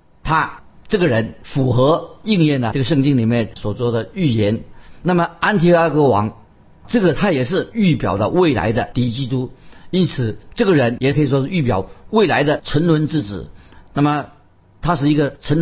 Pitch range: 115-155 Hz